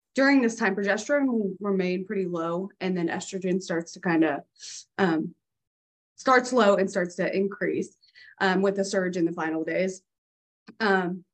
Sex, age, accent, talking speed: female, 20-39, American, 160 wpm